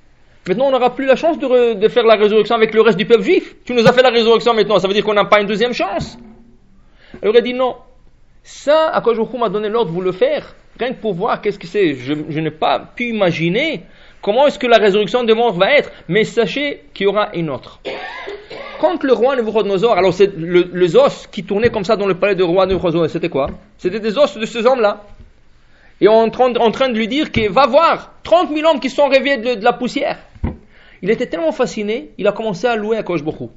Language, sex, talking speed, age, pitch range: English, male, 250 wpm, 40-59, 185-250 Hz